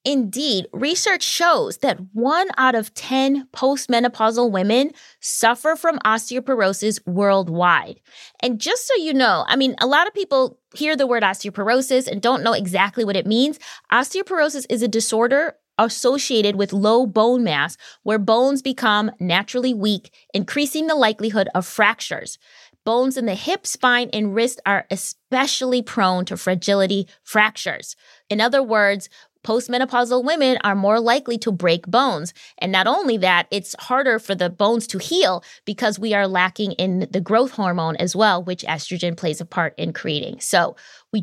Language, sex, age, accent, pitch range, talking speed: English, female, 20-39, American, 195-260 Hz, 160 wpm